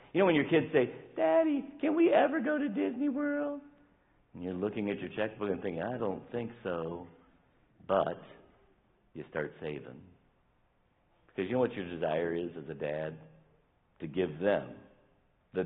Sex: male